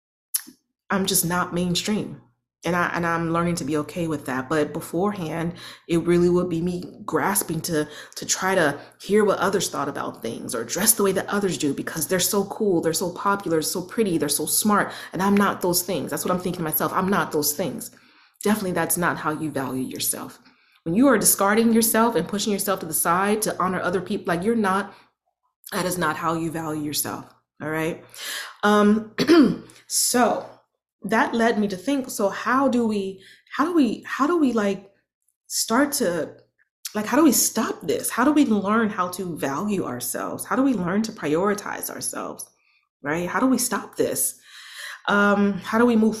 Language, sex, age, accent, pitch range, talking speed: English, female, 30-49, American, 170-215 Hz, 195 wpm